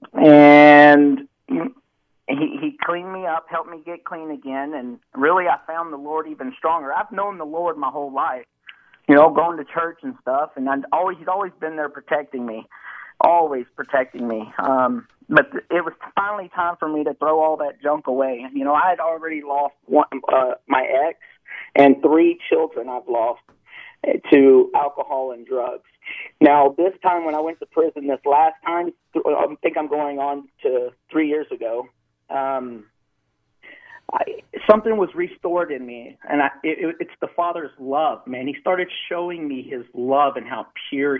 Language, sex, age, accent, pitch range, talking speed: English, male, 40-59, American, 140-180 Hz, 170 wpm